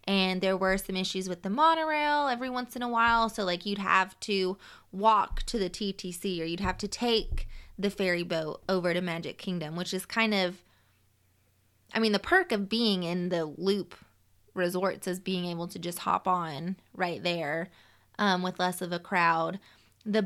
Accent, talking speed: American, 190 wpm